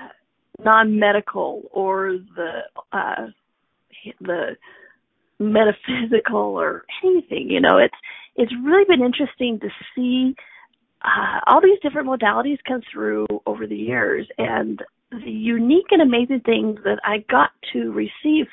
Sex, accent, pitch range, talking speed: female, American, 215-295 Hz, 125 wpm